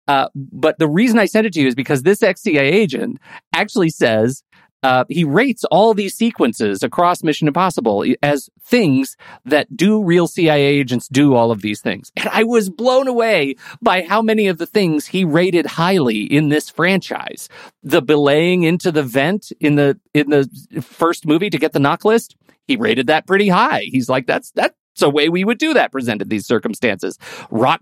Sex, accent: male, American